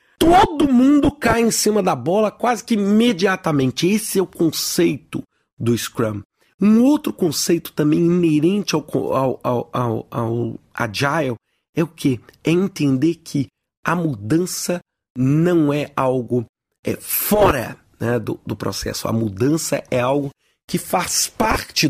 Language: Portuguese